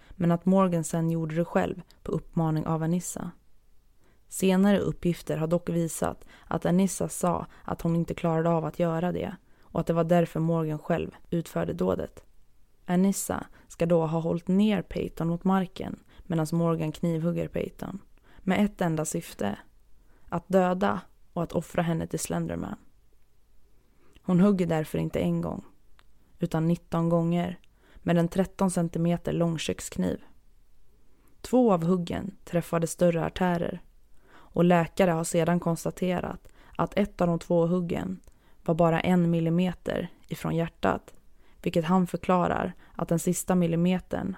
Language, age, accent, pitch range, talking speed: Swedish, 20-39, native, 165-185 Hz, 145 wpm